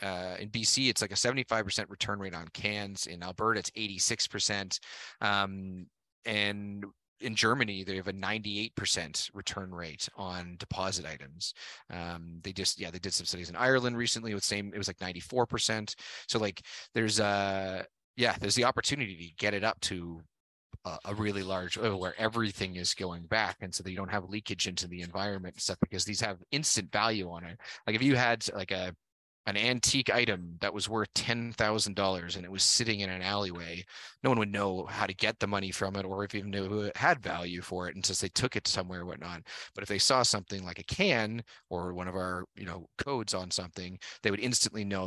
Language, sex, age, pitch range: English, male, 30-49, 90-110 Hz